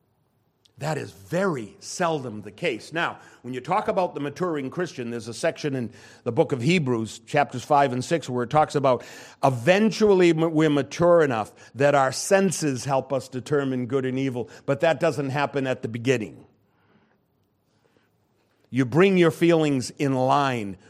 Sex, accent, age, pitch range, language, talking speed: male, American, 50-69, 110-155 Hz, English, 160 wpm